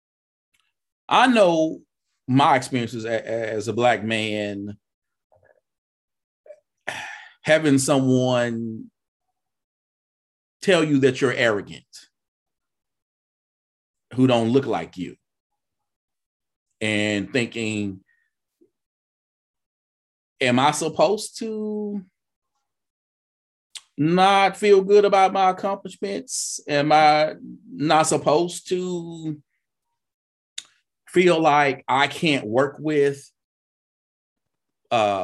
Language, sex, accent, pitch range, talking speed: English, male, American, 110-155 Hz, 75 wpm